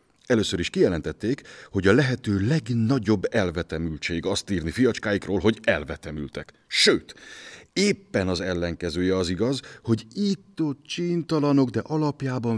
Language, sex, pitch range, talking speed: Hungarian, male, 90-120 Hz, 115 wpm